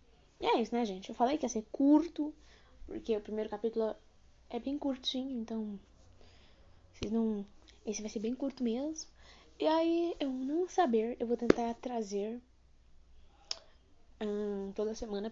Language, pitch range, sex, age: Portuguese, 205-255 Hz, female, 10-29